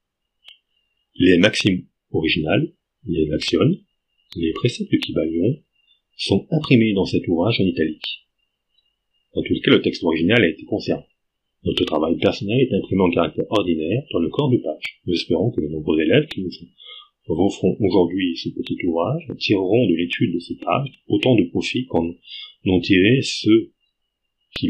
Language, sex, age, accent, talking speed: Dutch, male, 30-49, French, 160 wpm